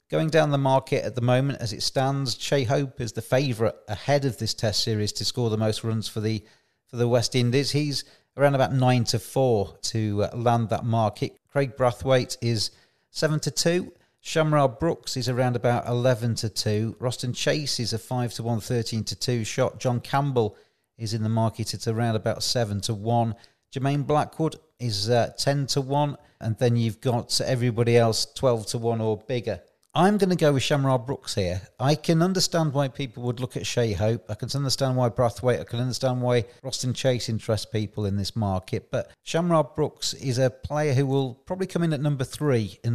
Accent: British